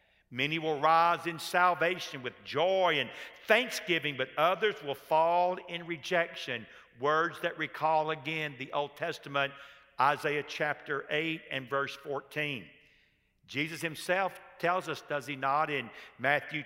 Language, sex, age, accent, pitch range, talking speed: English, male, 50-69, American, 135-160 Hz, 135 wpm